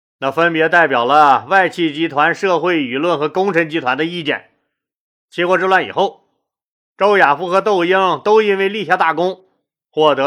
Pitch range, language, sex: 155-200 Hz, Chinese, male